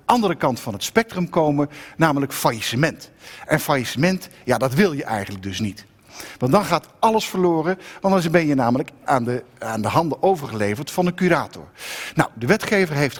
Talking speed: 180 wpm